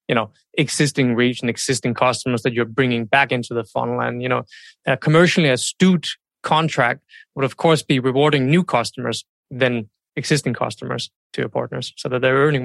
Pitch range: 125-150 Hz